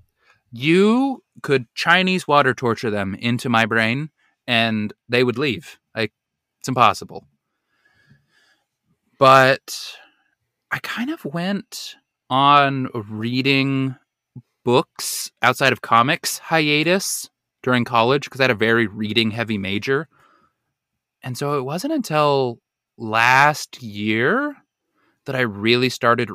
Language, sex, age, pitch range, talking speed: English, male, 20-39, 110-135 Hz, 110 wpm